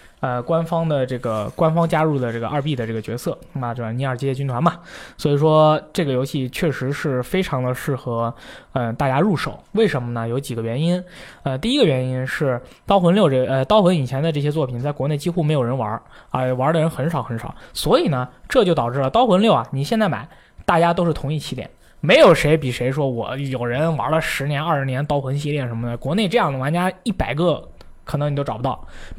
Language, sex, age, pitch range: Chinese, male, 20-39, 130-175 Hz